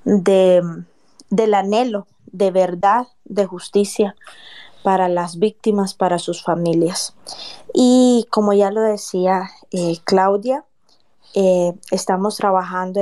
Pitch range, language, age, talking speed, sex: 180-225 Hz, Spanish, 20-39, 105 wpm, female